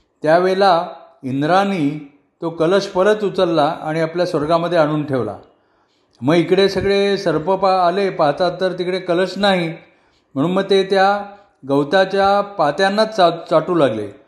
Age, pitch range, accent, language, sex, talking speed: 40-59, 145-185 Hz, native, Marathi, male, 125 wpm